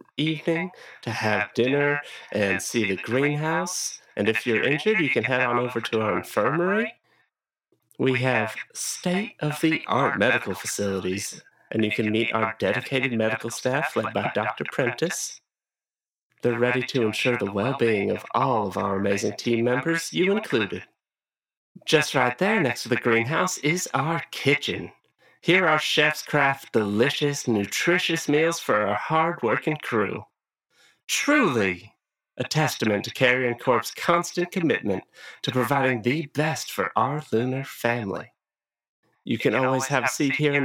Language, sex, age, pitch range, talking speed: English, male, 30-49, 115-165 Hz, 145 wpm